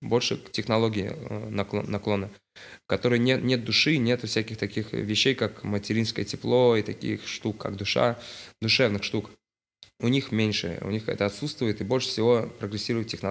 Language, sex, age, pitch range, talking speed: Russian, male, 20-39, 100-120 Hz, 150 wpm